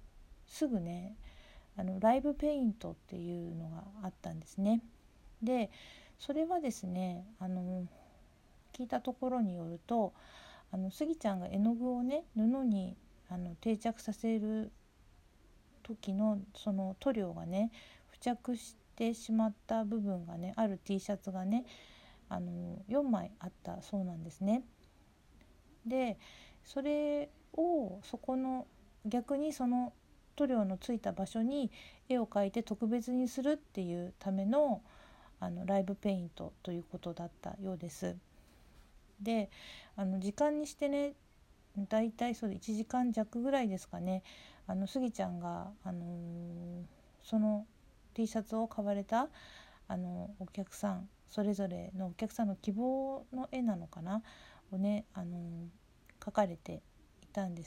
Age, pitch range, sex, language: 50-69, 185-240 Hz, female, Japanese